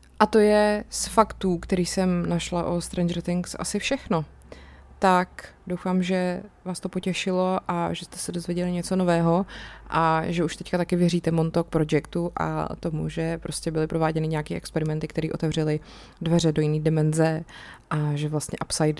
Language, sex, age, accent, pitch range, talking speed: Czech, female, 20-39, native, 155-180 Hz, 165 wpm